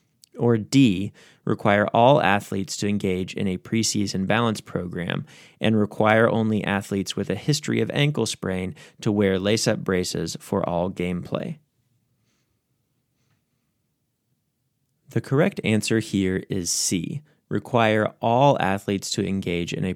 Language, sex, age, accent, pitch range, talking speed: English, male, 30-49, American, 95-120 Hz, 125 wpm